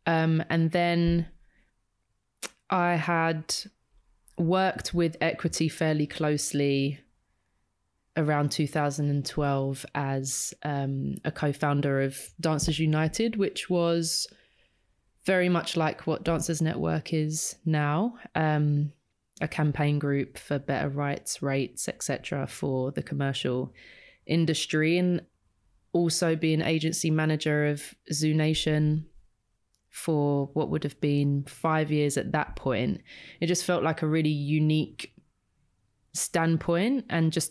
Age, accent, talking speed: 20-39, British, 110 wpm